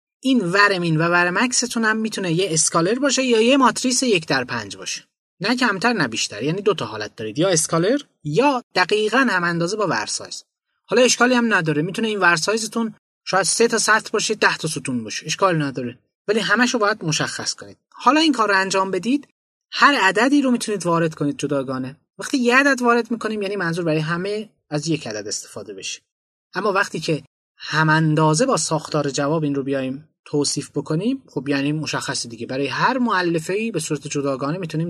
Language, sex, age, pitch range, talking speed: Persian, male, 30-49, 150-220 Hz, 180 wpm